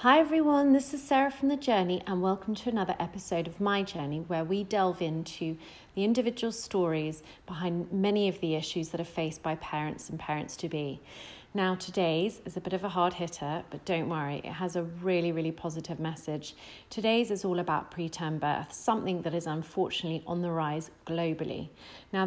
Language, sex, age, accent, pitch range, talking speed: English, female, 30-49, British, 160-195 Hz, 185 wpm